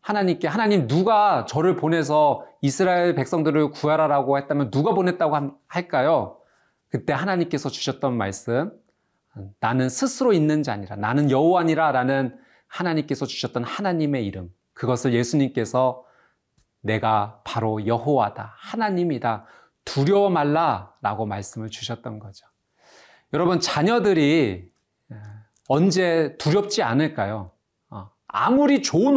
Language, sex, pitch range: Korean, male, 115-165 Hz